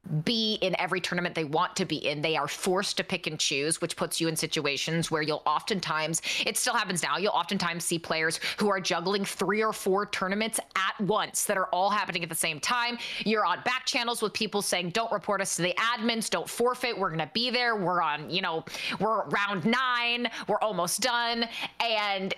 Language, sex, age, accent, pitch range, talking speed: English, female, 20-39, American, 165-225 Hz, 210 wpm